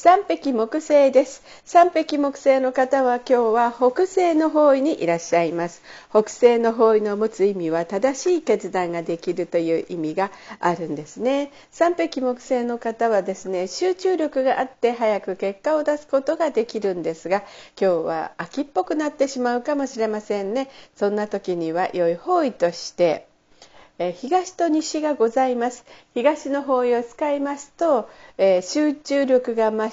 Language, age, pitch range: Japanese, 50-69, 195-290 Hz